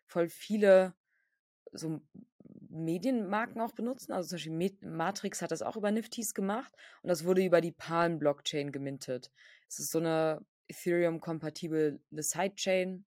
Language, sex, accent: German, female, German